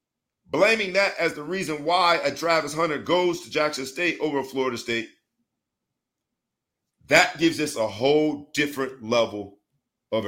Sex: male